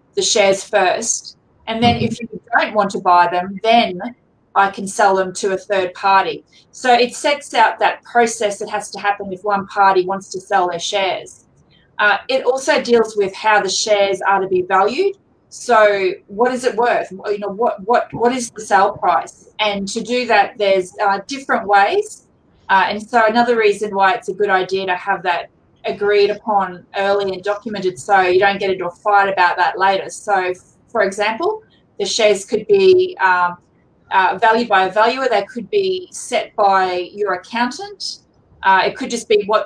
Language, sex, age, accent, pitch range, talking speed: English, female, 30-49, Australian, 195-235 Hz, 190 wpm